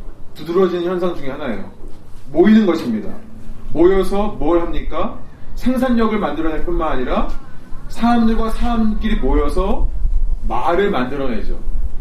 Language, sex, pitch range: Korean, male, 165-225 Hz